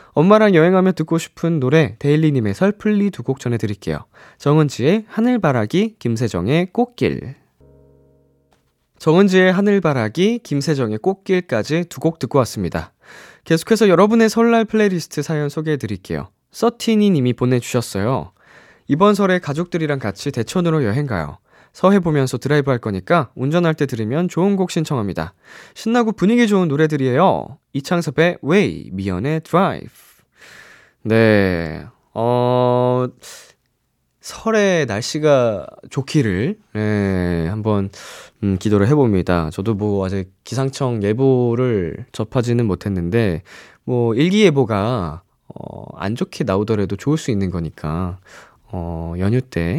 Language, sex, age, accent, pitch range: Korean, male, 20-39, native, 100-170 Hz